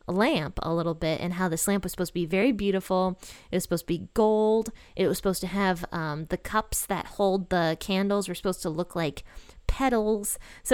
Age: 20-39